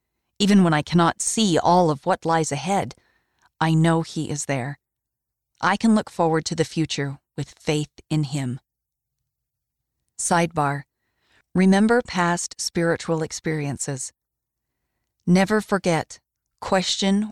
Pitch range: 145-180 Hz